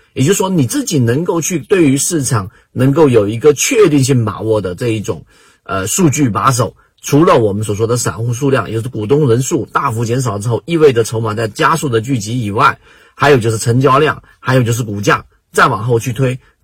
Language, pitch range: Chinese, 110-140 Hz